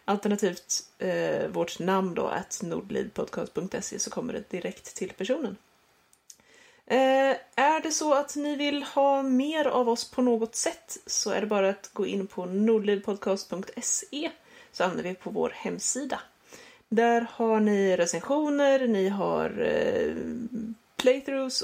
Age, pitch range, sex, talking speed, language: 30-49, 200-265 Hz, female, 135 wpm, Swedish